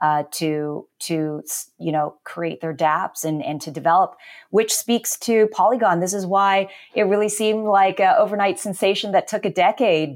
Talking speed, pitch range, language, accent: 175 wpm, 170-210 Hz, English, American